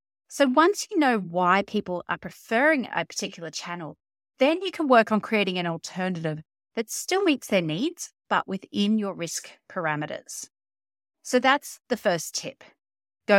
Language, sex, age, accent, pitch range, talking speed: English, female, 30-49, Australian, 165-255 Hz, 155 wpm